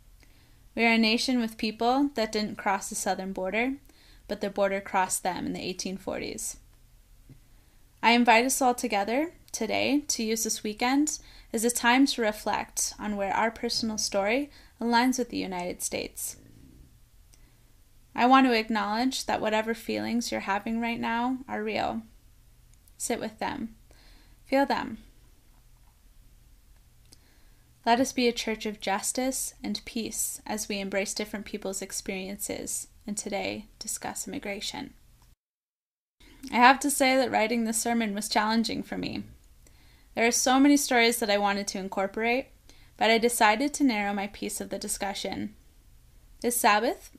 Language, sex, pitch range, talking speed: English, female, 195-240 Hz, 150 wpm